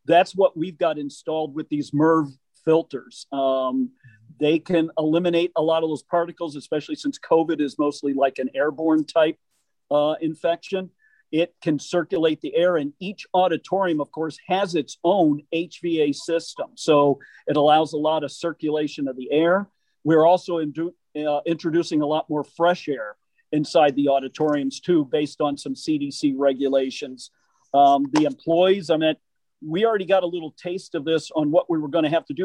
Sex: male